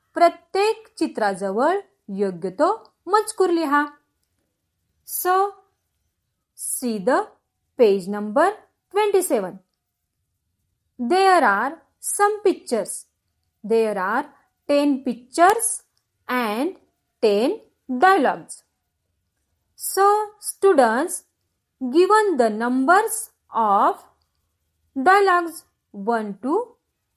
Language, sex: Marathi, female